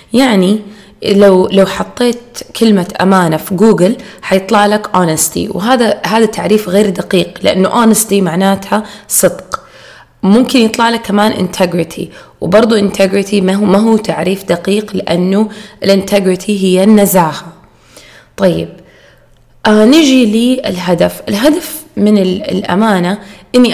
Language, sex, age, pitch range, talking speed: Arabic, female, 20-39, 180-215 Hz, 110 wpm